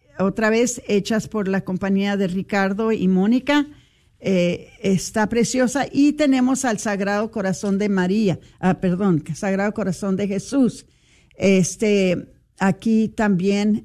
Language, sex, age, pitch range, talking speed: Spanish, female, 50-69, 190-225 Hz, 125 wpm